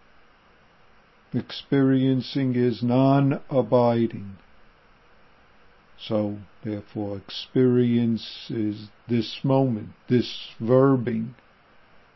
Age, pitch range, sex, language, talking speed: 50-69, 110-130 Hz, male, English, 55 wpm